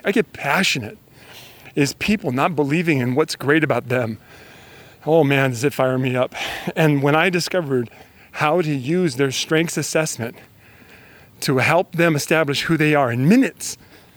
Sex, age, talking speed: male, 40-59, 160 wpm